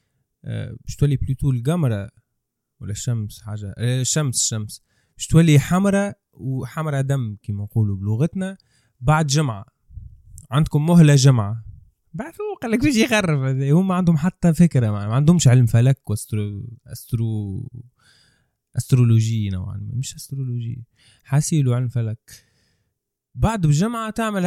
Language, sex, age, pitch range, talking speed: Arabic, male, 20-39, 120-175 Hz, 115 wpm